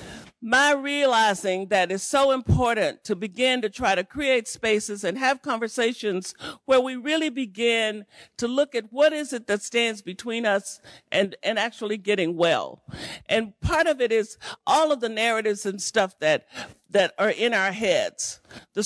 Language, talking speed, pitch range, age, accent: English, 170 wpm, 190-250 Hz, 50-69, American